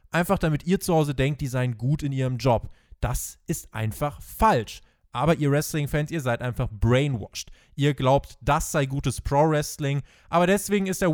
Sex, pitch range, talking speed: male, 125-175 Hz, 180 wpm